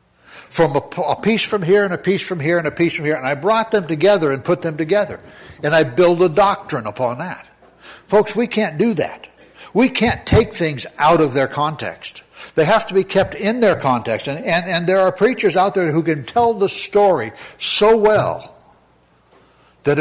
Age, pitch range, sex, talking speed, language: 60-79, 130-185 Hz, male, 205 wpm, English